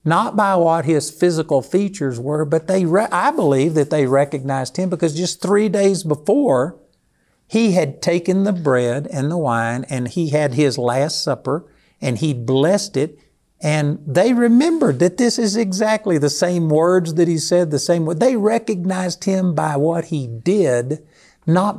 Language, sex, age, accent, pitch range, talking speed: English, male, 60-79, American, 130-180 Hz, 170 wpm